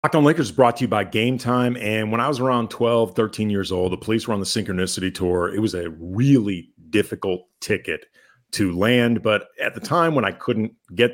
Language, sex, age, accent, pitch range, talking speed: English, male, 40-59, American, 105-130 Hz, 225 wpm